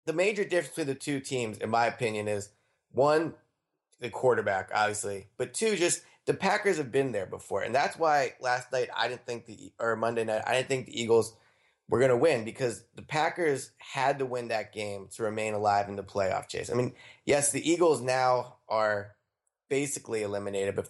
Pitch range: 110-135 Hz